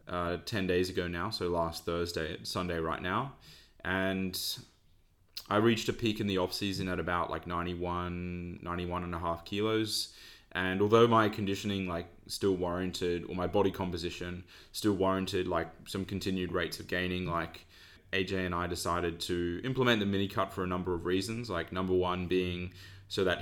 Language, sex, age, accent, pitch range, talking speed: English, male, 20-39, Australian, 85-95 Hz, 175 wpm